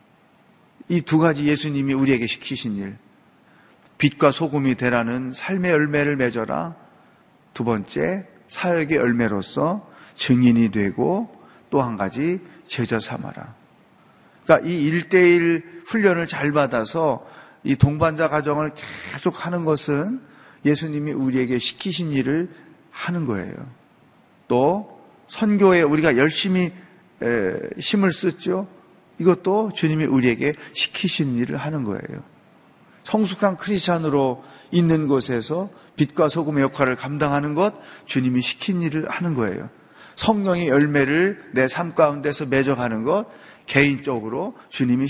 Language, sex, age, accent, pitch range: Korean, male, 40-59, native, 135-190 Hz